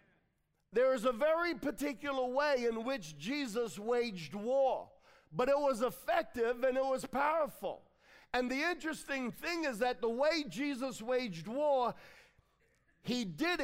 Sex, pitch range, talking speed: male, 180-260 Hz, 140 wpm